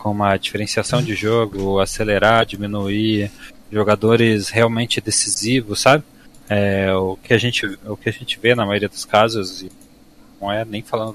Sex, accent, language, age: male, Brazilian, Portuguese, 20-39